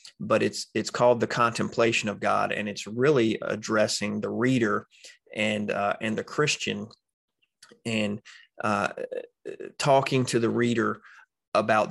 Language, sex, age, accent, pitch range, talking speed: English, male, 30-49, American, 105-130 Hz, 130 wpm